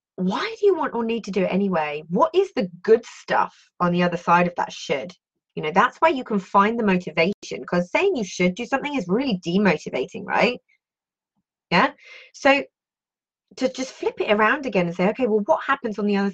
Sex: female